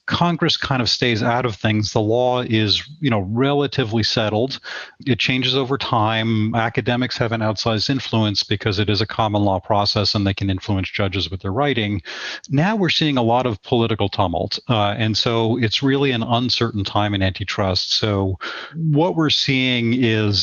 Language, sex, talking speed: English, male, 180 wpm